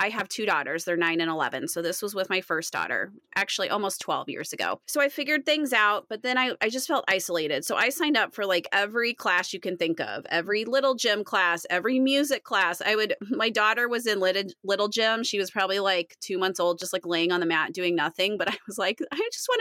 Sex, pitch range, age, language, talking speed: female, 185-250 Hz, 30-49, English, 250 wpm